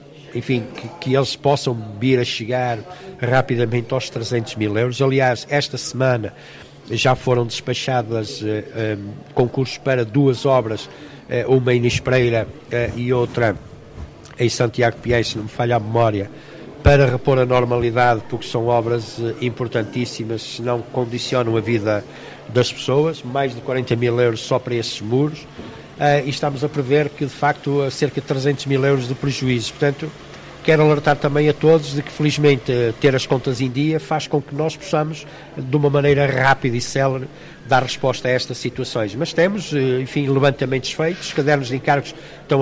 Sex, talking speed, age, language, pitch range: male, 170 wpm, 60-79, Portuguese, 120-145 Hz